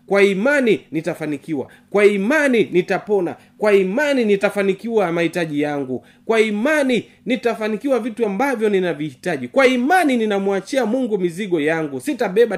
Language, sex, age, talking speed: Swahili, male, 30-49, 115 wpm